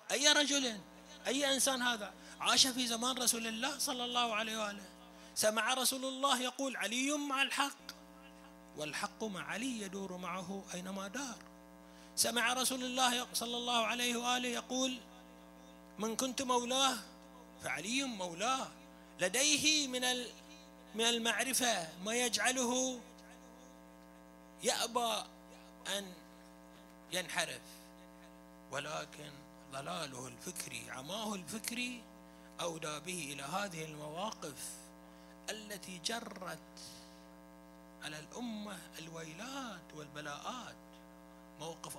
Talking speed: 95 wpm